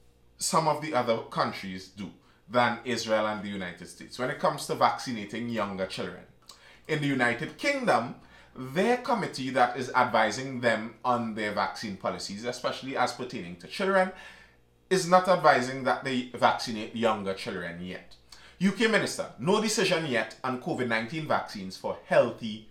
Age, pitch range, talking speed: 30-49, 110-180 Hz, 150 wpm